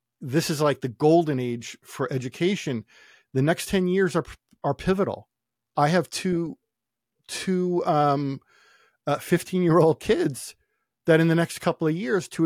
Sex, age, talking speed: male, 50-69, 150 wpm